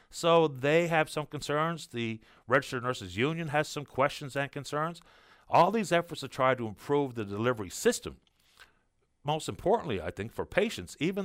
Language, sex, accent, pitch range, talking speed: English, male, American, 115-155 Hz, 165 wpm